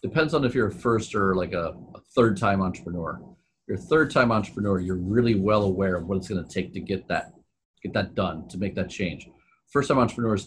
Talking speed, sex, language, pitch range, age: 220 wpm, male, English, 95-115 Hz, 40-59